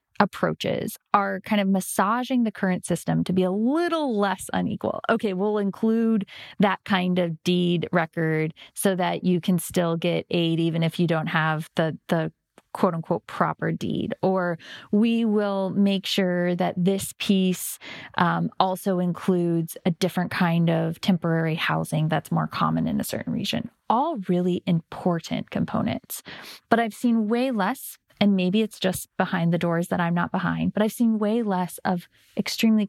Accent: American